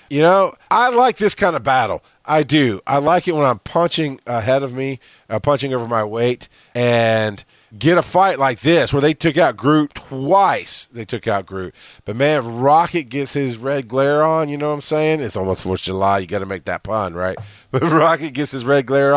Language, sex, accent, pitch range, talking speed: English, male, American, 115-160 Hz, 225 wpm